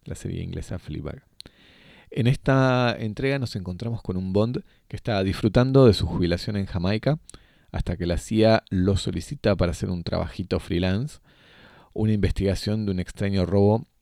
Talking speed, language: 160 wpm, Spanish